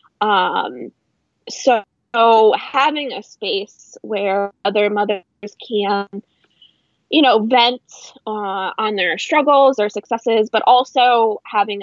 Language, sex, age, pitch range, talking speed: English, female, 20-39, 200-250 Hz, 110 wpm